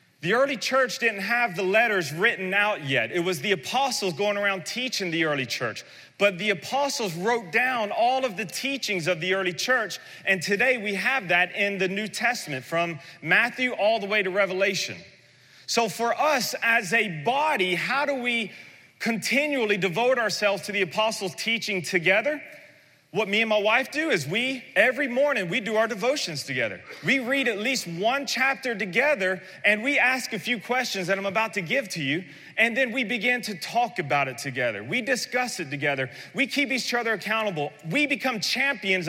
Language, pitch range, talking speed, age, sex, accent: English, 190-255 Hz, 185 wpm, 30-49, male, American